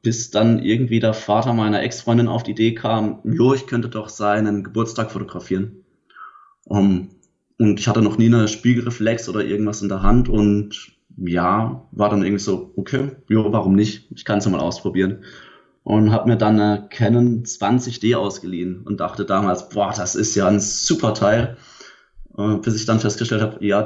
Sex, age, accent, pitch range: male, 20-39, German, 100-115 Hz